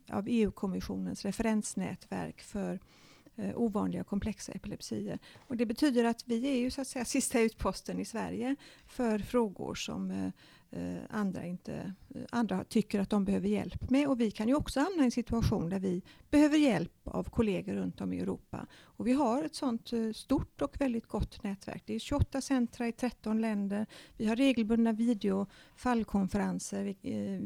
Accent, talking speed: native, 175 wpm